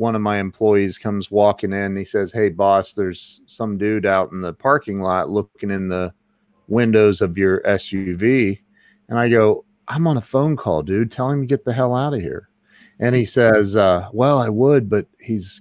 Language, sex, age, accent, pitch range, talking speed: English, male, 30-49, American, 105-145 Hz, 205 wpm